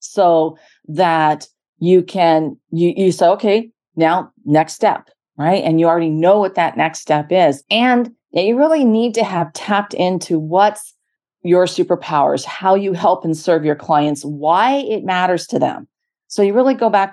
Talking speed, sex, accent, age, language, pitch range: 170 wpm, female, American, 40-59, English, 165-205 Hz